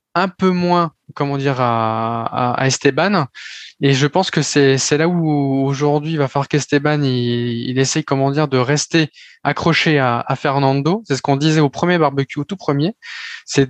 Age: 20-39